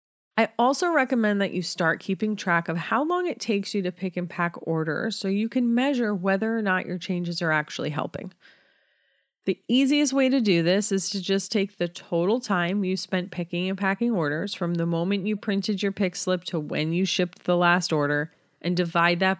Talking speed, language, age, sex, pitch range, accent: 210 wpm, English, 30-49, female, 175-245 Hz, American